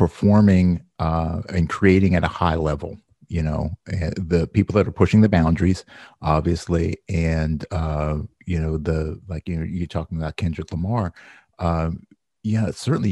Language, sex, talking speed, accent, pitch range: English, male, 160 wpm, American, 80-100 Hz